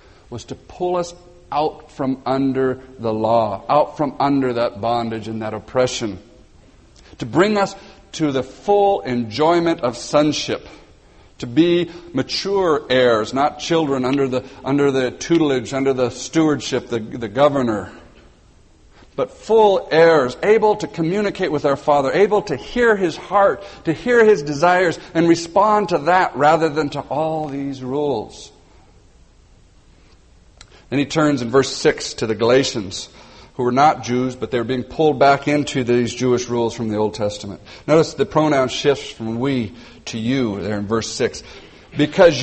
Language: English